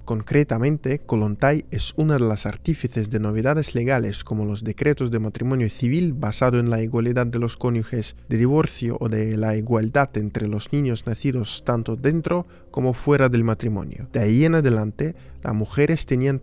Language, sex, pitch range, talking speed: Spanish, male, 110-140 Hz, 170 wpm